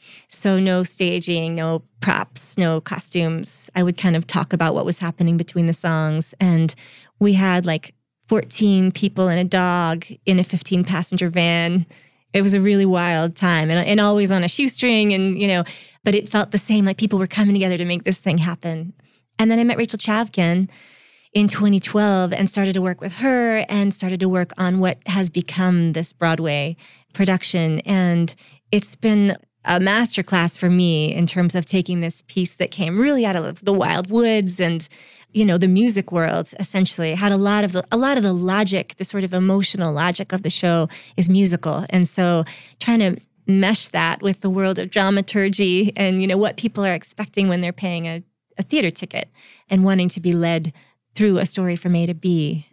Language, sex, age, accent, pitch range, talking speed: English, female, 20-39, American, 170-200 Hz, 195 wpm